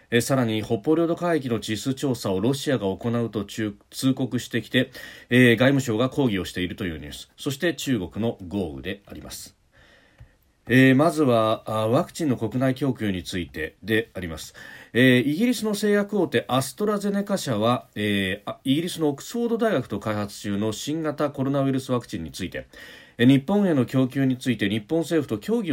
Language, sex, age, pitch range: Japanese, male, 40-59, 105-145 Hz